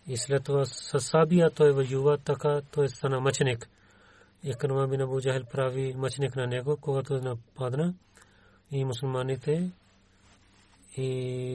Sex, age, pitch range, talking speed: male, 40-59, 115-145 Hz, 130 wpm